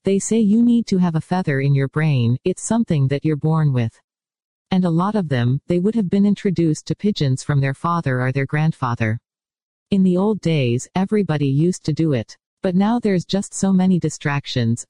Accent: American